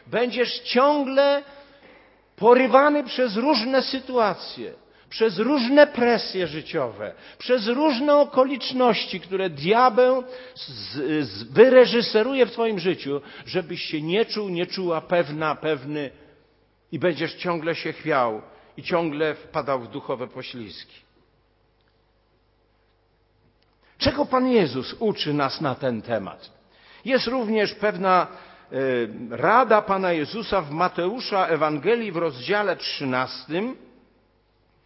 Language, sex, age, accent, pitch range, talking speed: Polish, male, 50-69, native, 145-240 Hz, 100 wpm